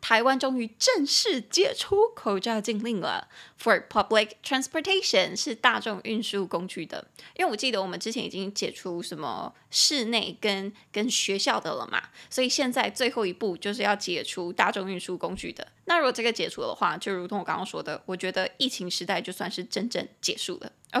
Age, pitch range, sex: 20-39, 200-260 Hz, female